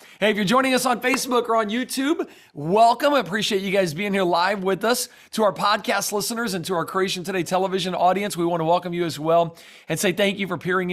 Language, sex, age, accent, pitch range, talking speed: English, male, 40-59, American, 170-225 Hz, 240 wpm